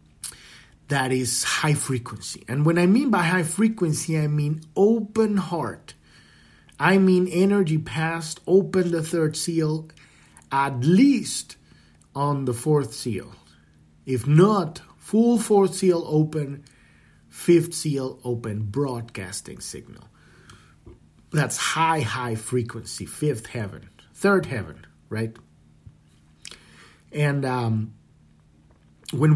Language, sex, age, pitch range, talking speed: English, male, 50-69, 115-175 Hz, 105 wpm